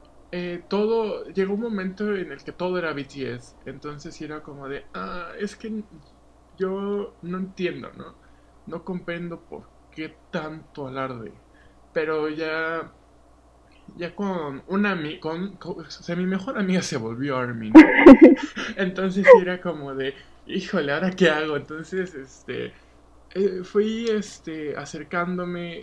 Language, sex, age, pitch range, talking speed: Spanish, male, 20-39, 140-190 Hz, 130 wpm